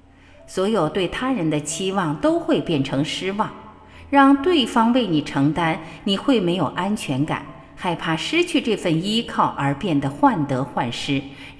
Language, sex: Chinese, female